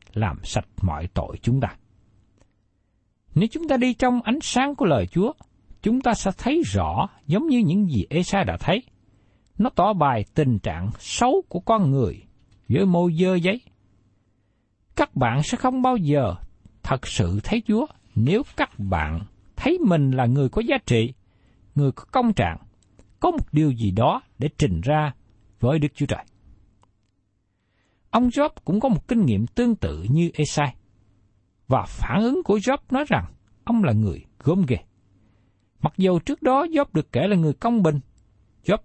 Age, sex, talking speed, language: 60-79, male, 175 wpm, Vietnamese